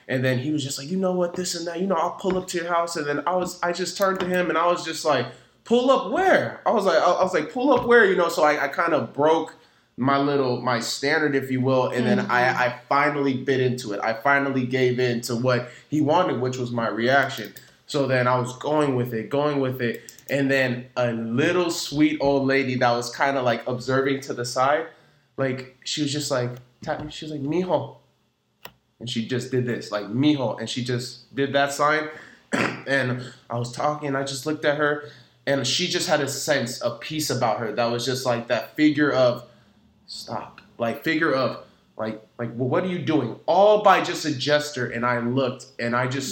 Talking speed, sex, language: 230 wpm, male, English